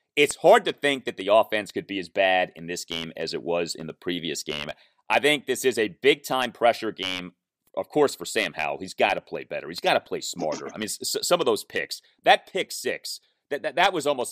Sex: male